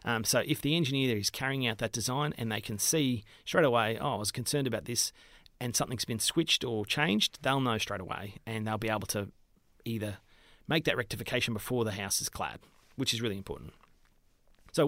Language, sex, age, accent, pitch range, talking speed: English, male, 30-49, Australian, 110-135 Hz, 205 wpm